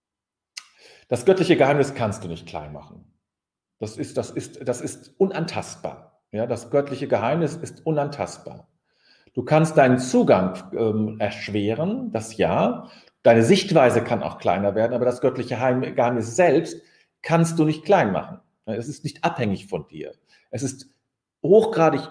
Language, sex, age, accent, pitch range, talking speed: German, male, 40-59, German, 110-155 Hz, 135 wpm